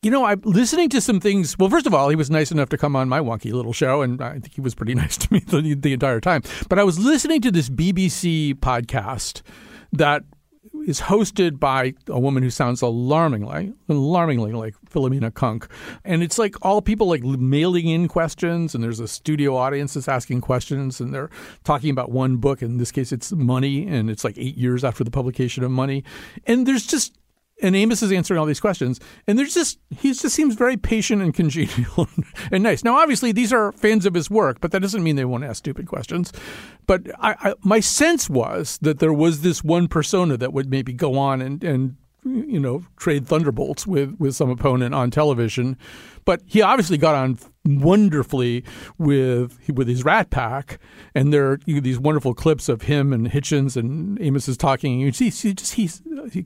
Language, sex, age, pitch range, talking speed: English, male, 50-69, 130-190 Hz, 205 wpm